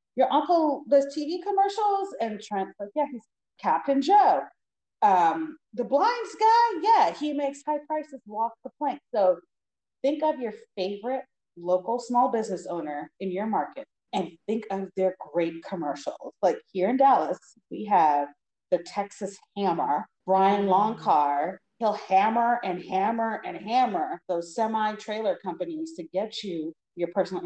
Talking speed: 145 wpm